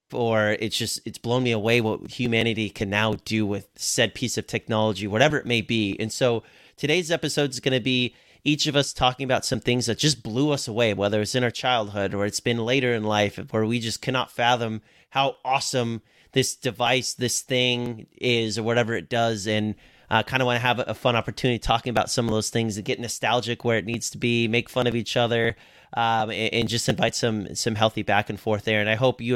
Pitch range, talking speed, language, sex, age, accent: 110-135 Hz, 230 wpm, English, male, 30-49, American